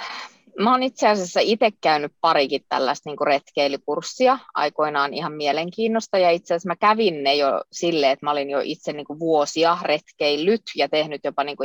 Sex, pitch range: female, 140-175 Hz